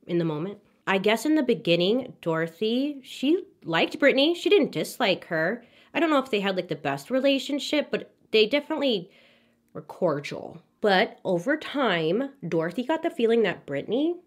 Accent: American